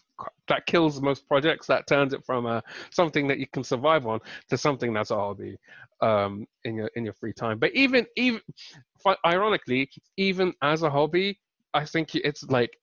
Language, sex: English, male